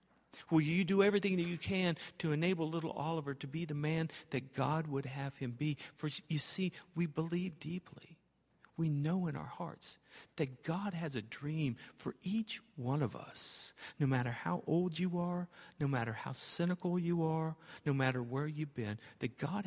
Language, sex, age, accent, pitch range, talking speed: English, male, 50-69, American, 135-180 Hz, 185 wpm